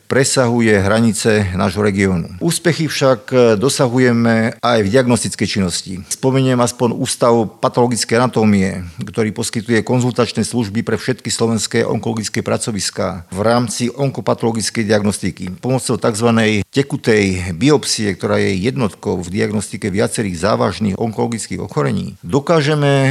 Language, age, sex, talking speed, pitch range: Slovak, 50-69, male, 110 wpm, 105-125 Hz